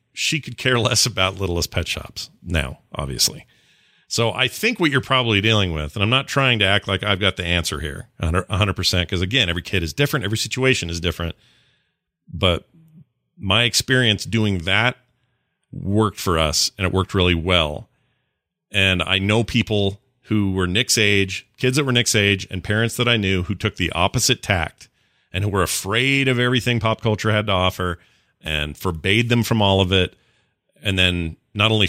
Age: 40-59